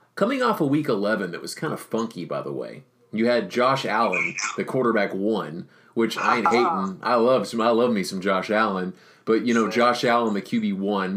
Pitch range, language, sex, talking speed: 95-120 Hz, English, male, 225 wpm